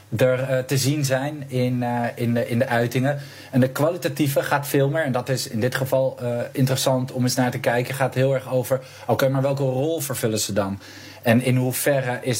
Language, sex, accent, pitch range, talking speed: English, male, Dutch, 115-135 Hz, 225 wpm